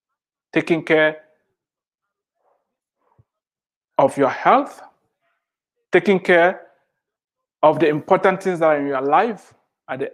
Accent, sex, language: Nigerian, male, English